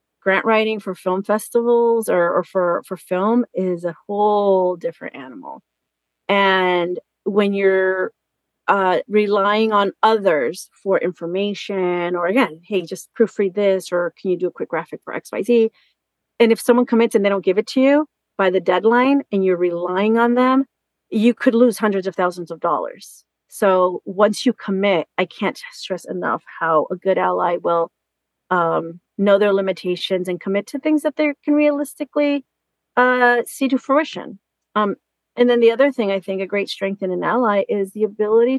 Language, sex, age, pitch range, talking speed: English, female, 40-59, 180-230 Hz, 175 wpm